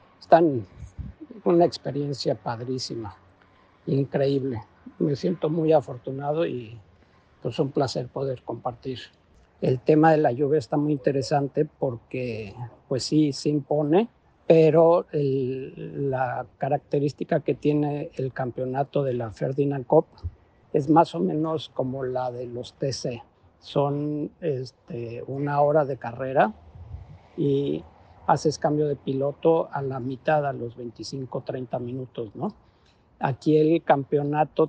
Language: Spanish